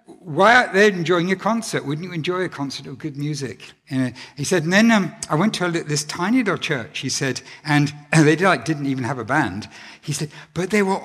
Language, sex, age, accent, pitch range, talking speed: English, male, 60-79, British, 130-185 Hz, 215 wpm